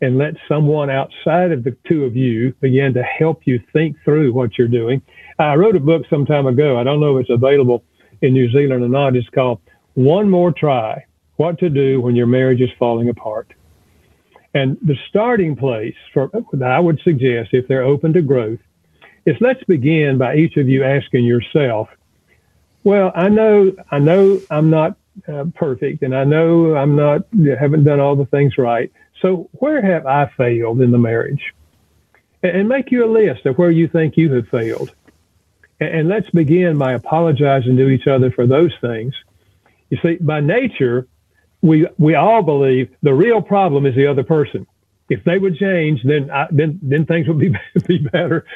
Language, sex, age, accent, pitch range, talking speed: English, male, 50-69, American, 130-175 Hz, 190 wpm